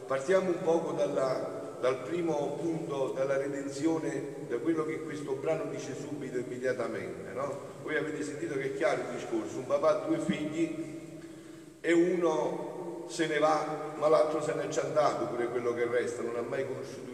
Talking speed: 180 wpm